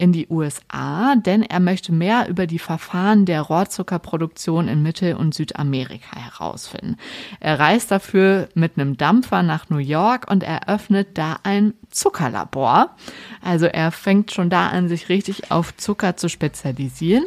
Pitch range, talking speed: 155-200 Hz, 150 wpm